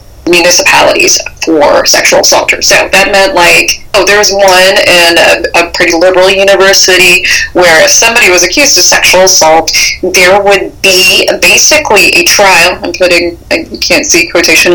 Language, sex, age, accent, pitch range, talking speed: English, female, 20-39, American, 165-195 Hz, 150 wpm